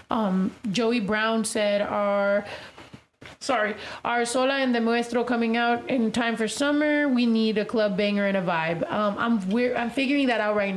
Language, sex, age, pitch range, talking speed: English, female, 30-49, 210-260 Hz, 185 wpm